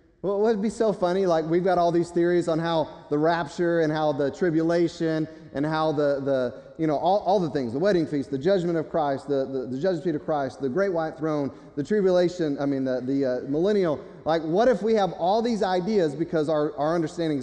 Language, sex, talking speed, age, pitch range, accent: English, male, 230 wpm, 30-49, 135-170 Hz, American